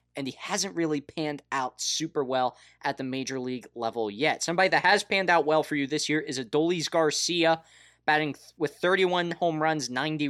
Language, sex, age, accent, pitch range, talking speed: English, male, 20-39, American, 130-170 Hz, 200 wpm